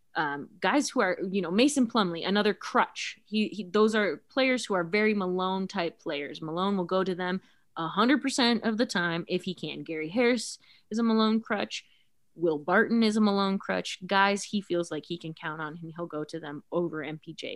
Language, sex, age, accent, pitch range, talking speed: English, female, 20-39, American, 160-210 Hz, 200 wpm